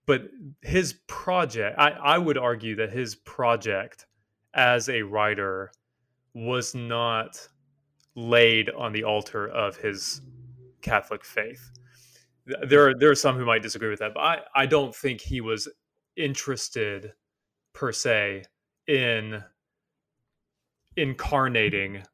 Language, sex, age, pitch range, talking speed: English, male, 20-39, 105-140 Hz, 120 wpm